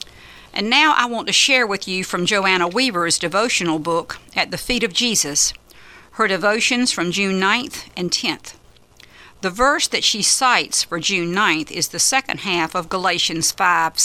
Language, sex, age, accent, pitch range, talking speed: English, female, 50-69, American, 170-230 Hz, 170 wpm